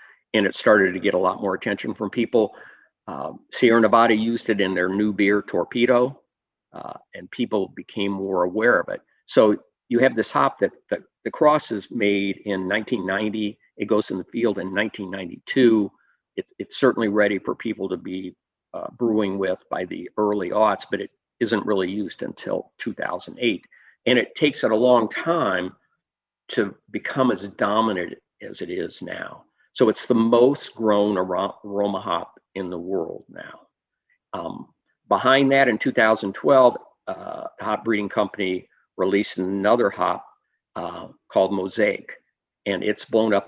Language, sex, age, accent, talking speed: English, male, 50-69, American, 160 wpm